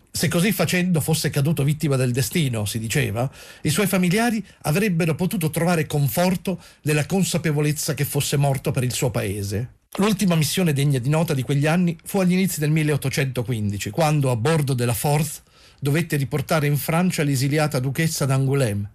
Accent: native